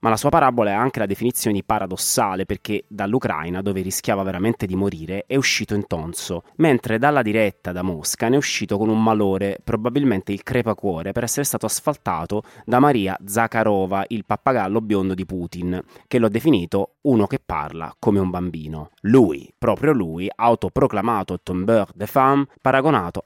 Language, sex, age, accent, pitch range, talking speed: Italian, male, 30-49, native, 95-120 Hz, 170 wpm